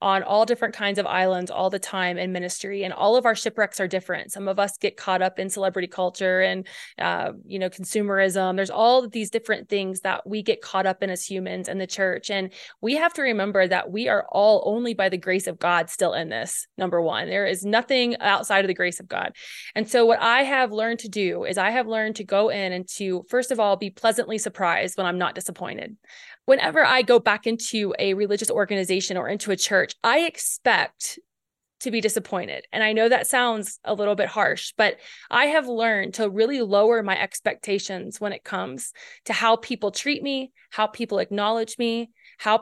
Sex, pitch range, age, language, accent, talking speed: female, 190-235 Hz, 20-39, English, American, 215 wpm